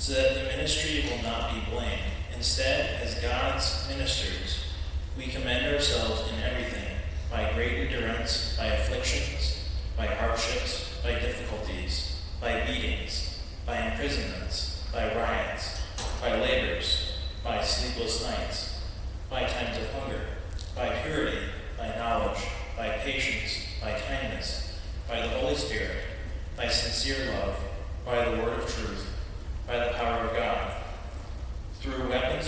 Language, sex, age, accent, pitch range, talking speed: English, male, 30-49, American, 75-105 Hz, 125 wpm